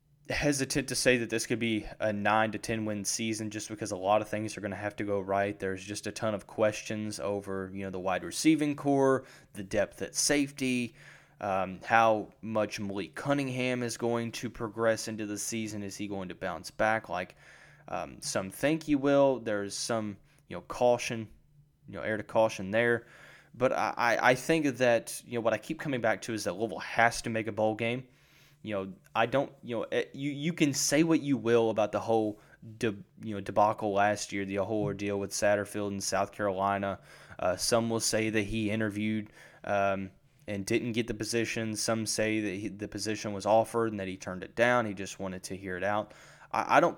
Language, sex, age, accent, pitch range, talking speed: English, male, 20-39, American, 105-125 Hz, 215 wpm